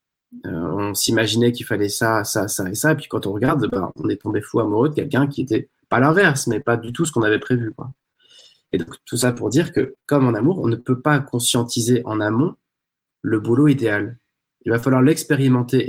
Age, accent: 20-39, French